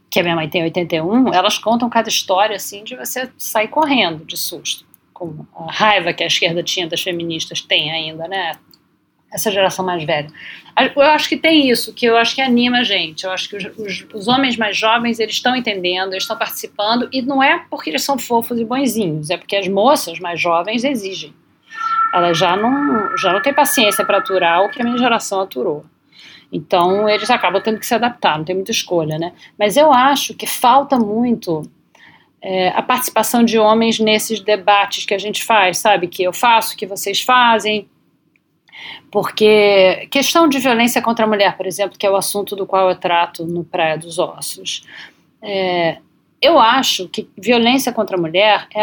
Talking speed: 195 wpm